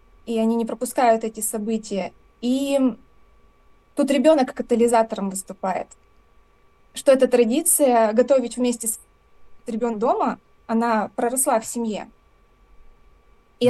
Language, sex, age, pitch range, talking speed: Russian, female, 20-39, 220-260 Hz, 105 wpm